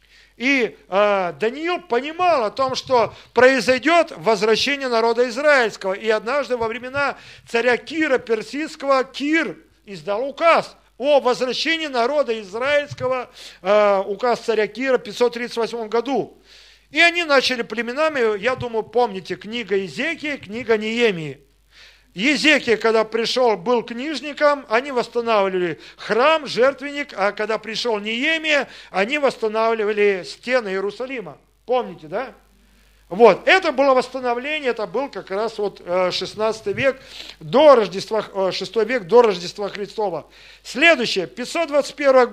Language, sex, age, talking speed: Russian, male, 40-59, 115 wpm